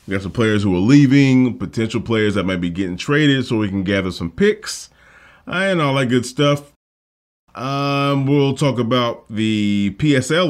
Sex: male